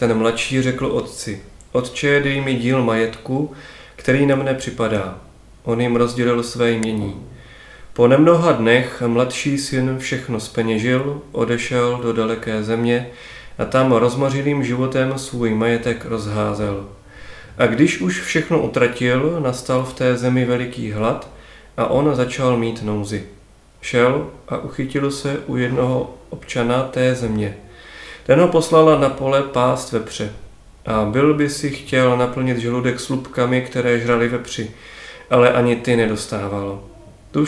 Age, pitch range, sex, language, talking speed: 30-49, 115-135 Hz, male, Czech, 135 wpm